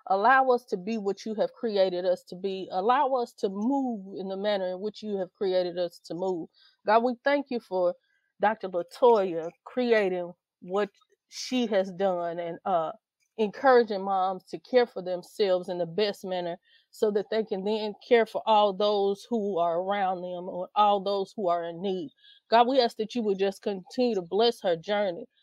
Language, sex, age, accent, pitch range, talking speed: English, female, 30-49, American, 190-245 Hz, 195 wpm